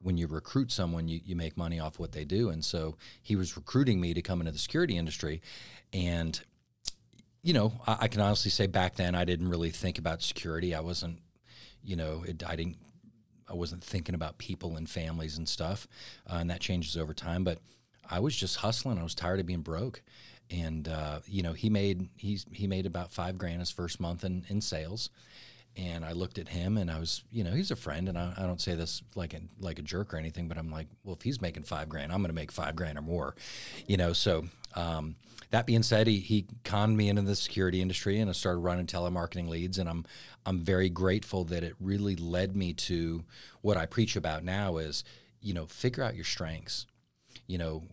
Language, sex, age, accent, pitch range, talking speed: English, male, 40-59, American, 85-100 Hz, 225 wpm